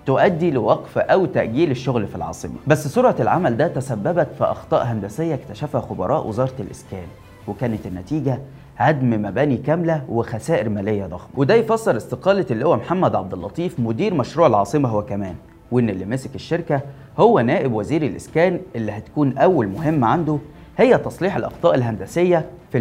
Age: 20-39